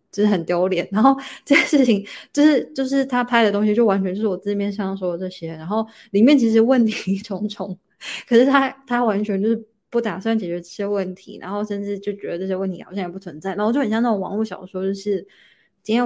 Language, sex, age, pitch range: Chinese, female, 20-39, 180-210 Hz